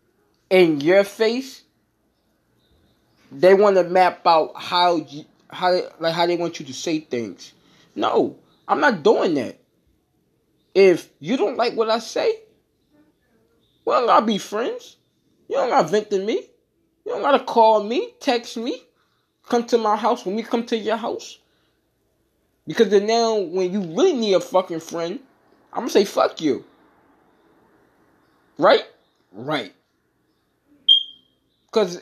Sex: male